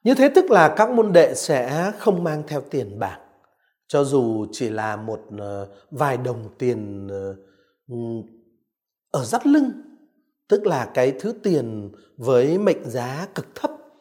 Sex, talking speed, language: male, 145 wpm, Vietnamese